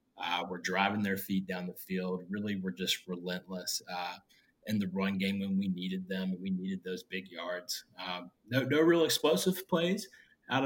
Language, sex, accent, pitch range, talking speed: English, male, American, 95-110 Hz, 185 wpm